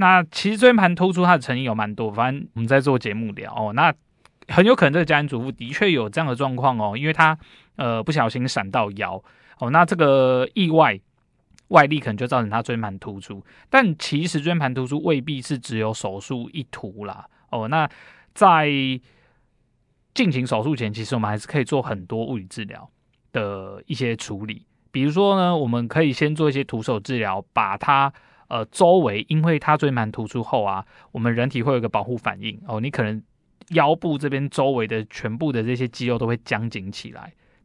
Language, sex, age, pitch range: Chinese, male, 20-39, 115-150 Hz